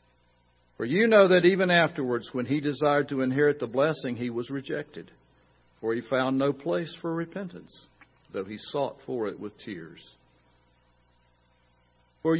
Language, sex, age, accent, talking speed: English, male, 60-79, American, 150 wpm